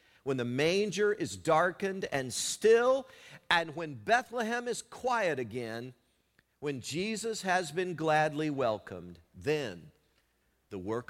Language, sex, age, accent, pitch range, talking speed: English, male, 50-69, American, 100-145 Hz, 120 wpm